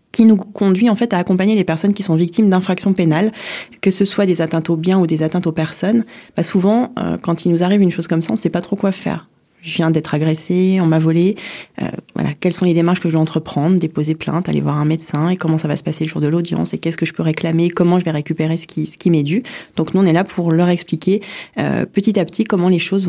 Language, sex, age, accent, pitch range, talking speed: French, female, 20-39, French, 165-200 Hz, 280 wpm